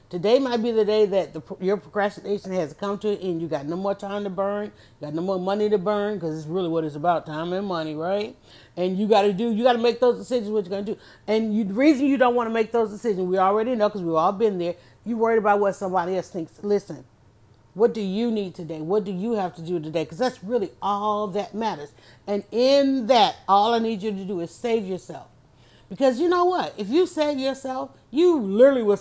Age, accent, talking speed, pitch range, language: 40-59, American, 250 wpm, 180-230 Hz, English